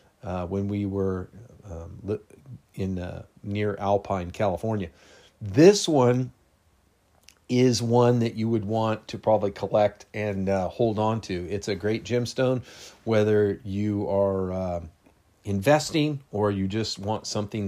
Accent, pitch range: American, 100-120 Hz